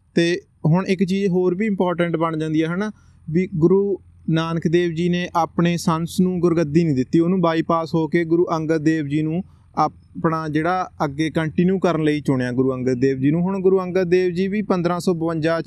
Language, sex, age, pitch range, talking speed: Punjabi, male, 30-49, 160-185 Hz, 195 wpm